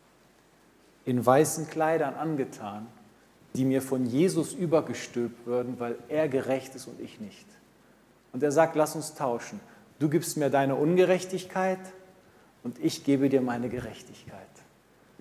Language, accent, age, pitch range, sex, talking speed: German, German, 40-59, 135-180 Hz, male, 135 wpm